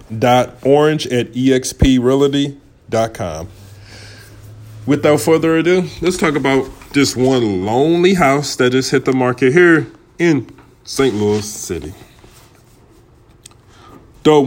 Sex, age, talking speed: male, 20-39, 100 wpm